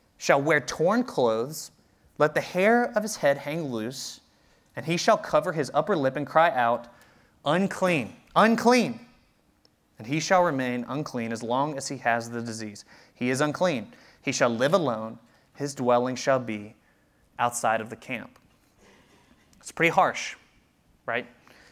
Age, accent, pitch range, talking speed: 30-49, American, 140-220 Hz, 150 wpm